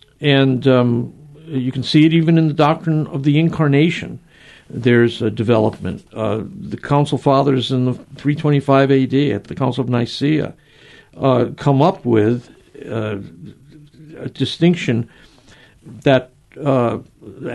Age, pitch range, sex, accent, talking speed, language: 60-79, 125-155 Hz, male, American, 125 wpm, English